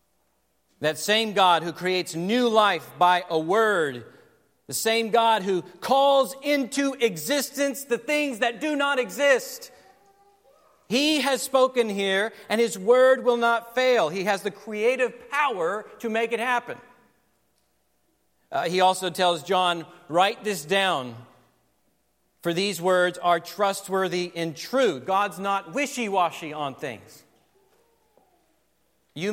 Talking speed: 130 wpm